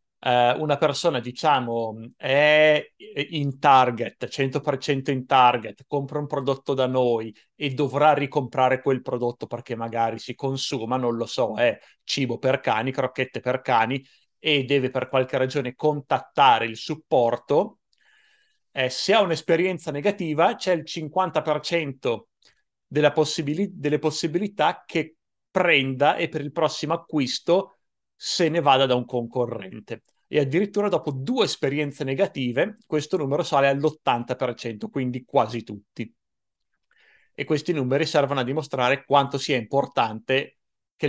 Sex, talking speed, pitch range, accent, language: male, 125 wpm, 125-150 Hz, native, Italian